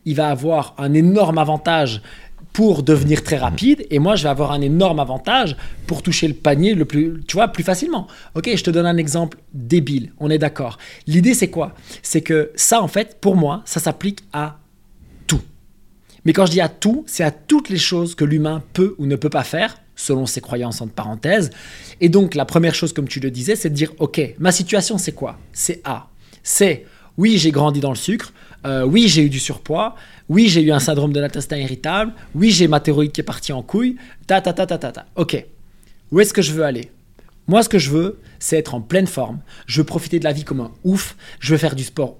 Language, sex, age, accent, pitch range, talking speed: French, male, 20-39, French, 135-185 Hz, 230 wpm